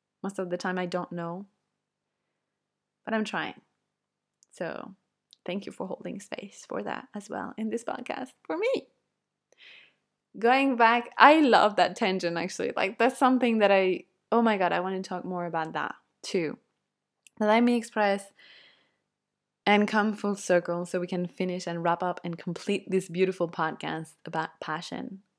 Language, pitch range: English, 180-230 Hz